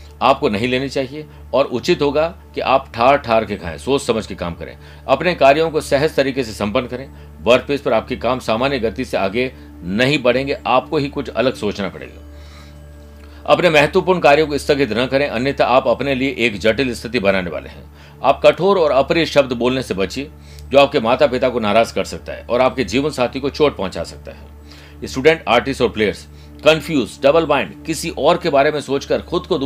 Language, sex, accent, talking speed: Hindi, male, native, 190 wpm